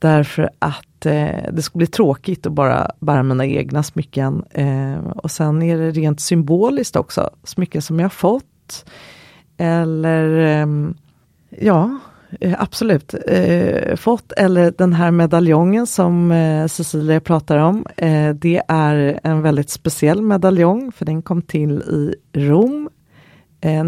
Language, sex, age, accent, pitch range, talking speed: Swedish, female, 30-49, native, 150-185 Hz, 140 wpm